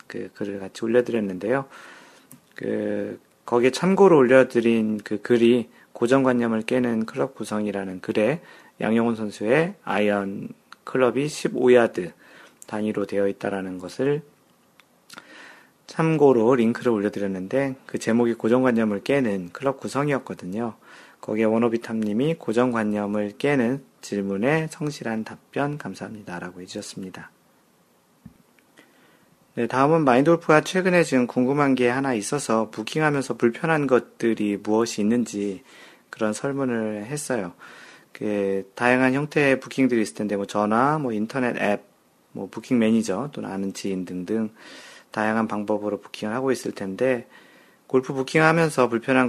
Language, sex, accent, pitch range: Korean, male, native, 105-130 Hz